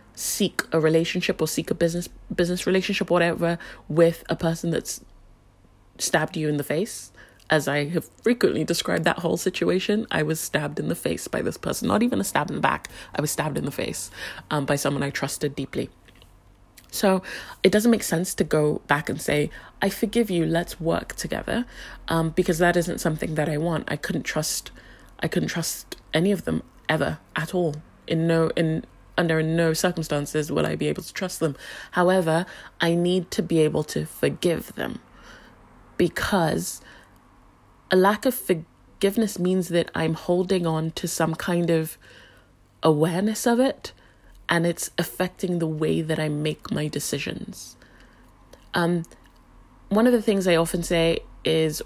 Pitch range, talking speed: 145-180 Hz, 170 wpm